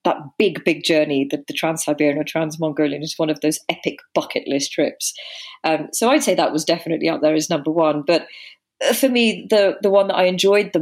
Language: English